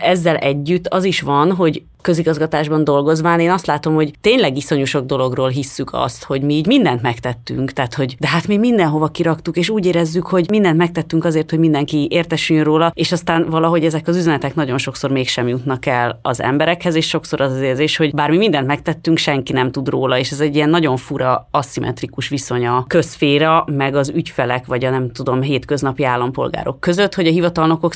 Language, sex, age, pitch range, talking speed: Hungarian, female, 30-49, 135-165 Hz, 195 wpm